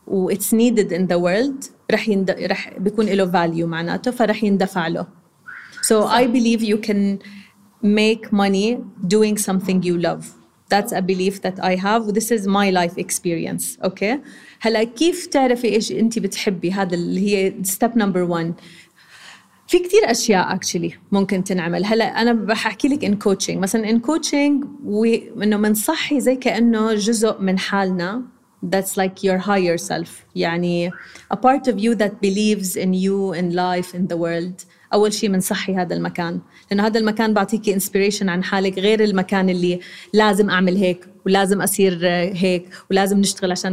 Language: Arabic